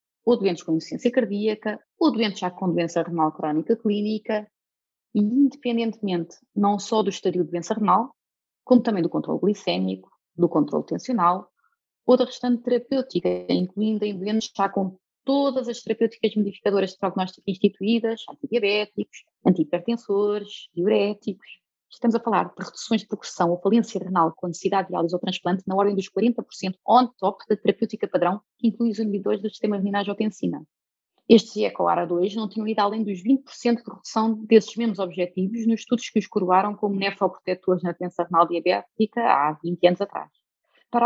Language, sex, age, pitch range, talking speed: Portuguese, female, 20-39, 185-230 Hz, 165 wpm